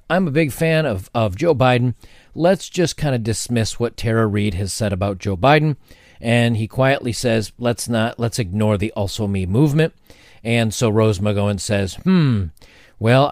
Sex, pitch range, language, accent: male, 105-140 Hz, English, American